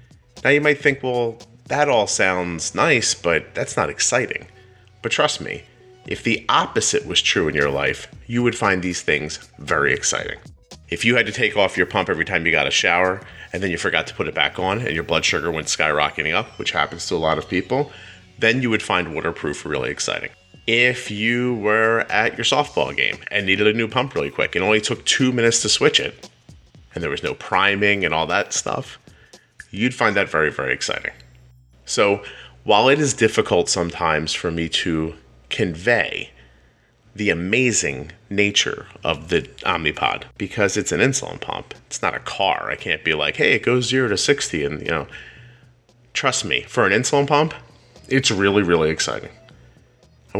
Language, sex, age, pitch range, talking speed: English, male, 30-49, 90-120 Hz, 190 wpm